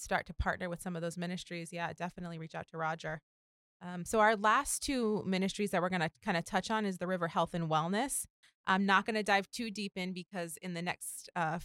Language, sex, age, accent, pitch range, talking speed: English, female, 20-39, American, 165-190 Hz, 240 wpm